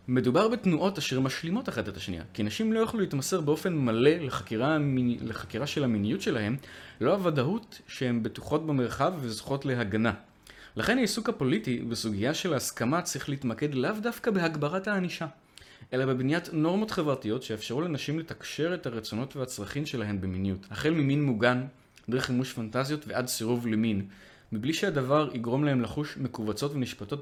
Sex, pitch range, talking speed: male, 110-145 Hz, 145 wpm